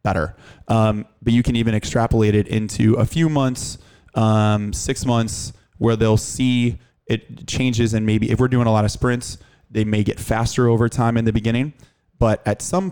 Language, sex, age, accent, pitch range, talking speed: English, male, 20-39, American, 100-115 Hz, 190 wpm